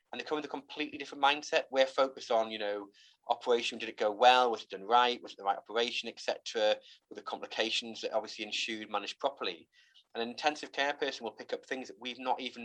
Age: 30-49